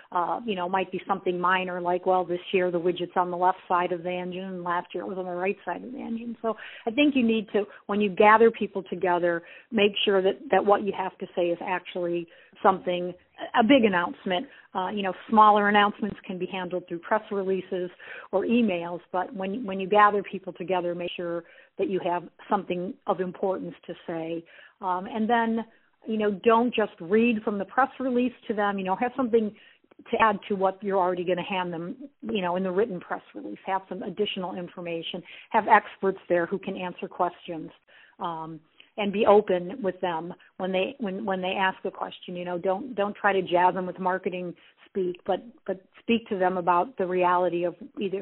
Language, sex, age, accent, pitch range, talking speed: English, female, 50-69, American, 180-210 Hz, 210 wpm